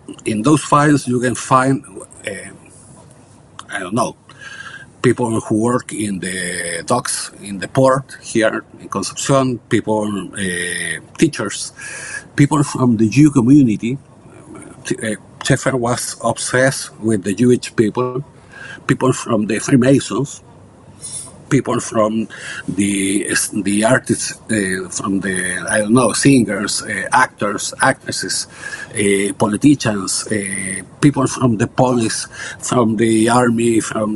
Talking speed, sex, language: 120 wpm, male, English